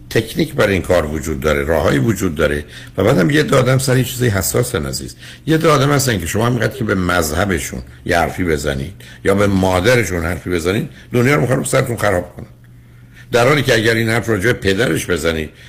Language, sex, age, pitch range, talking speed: Persian, male, 60-79, 80-125 Hz, 190 wpm